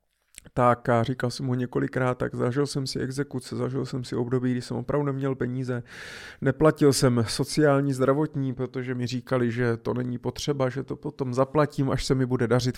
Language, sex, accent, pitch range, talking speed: Czech, male, native, 120-140 Hz, 185 wpm